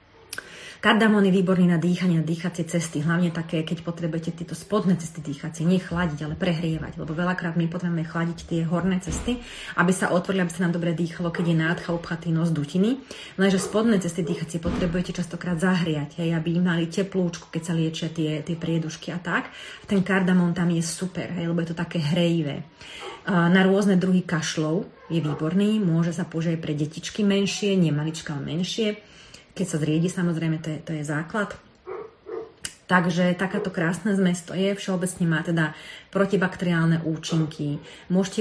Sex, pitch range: female, 160-185 Hz